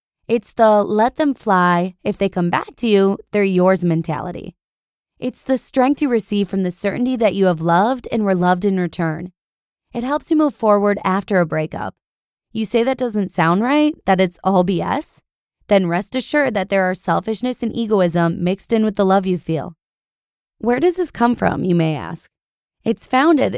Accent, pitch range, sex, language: American, 180-240 Hz, female, English